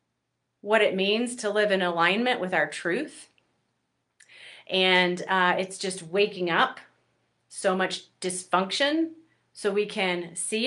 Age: 30-49